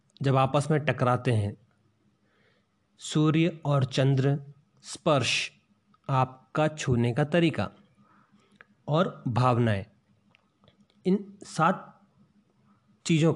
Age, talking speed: 40-59, 80 wpm